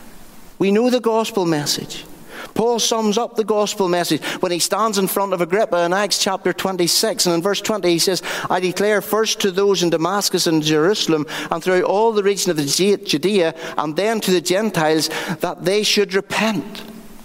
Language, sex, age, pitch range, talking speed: English, male, 60-79, 165-210 Hz, 185 wpm